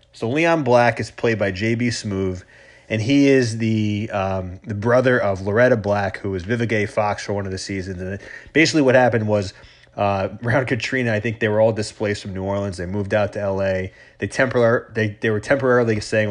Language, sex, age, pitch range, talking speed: English, male, 30-49, 100-125 Hz, 205 wpm